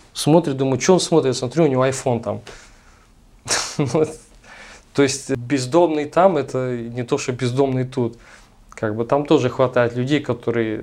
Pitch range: 120-155 Hz